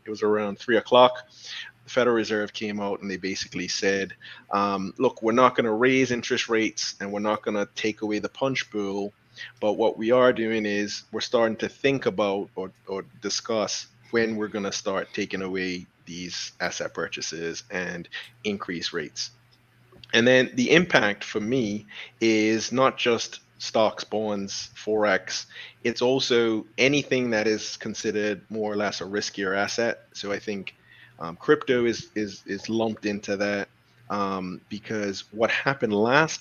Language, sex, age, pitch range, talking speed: English, male, 30-49, 100-120 Hz, 165 wpm